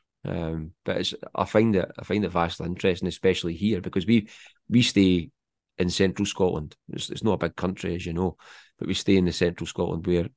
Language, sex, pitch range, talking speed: English, male, 85-95 Hz, 215 wpm